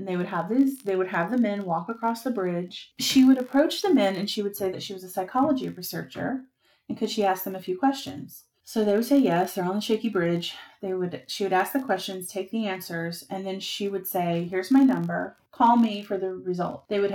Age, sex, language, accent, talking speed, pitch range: 30-49, female, English, American, 250 wpm, 185-235 Hz